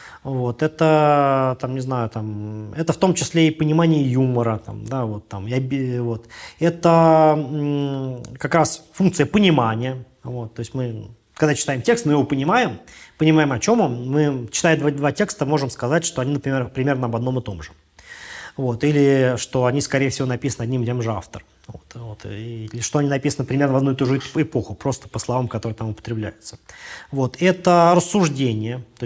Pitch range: 120-155 Hz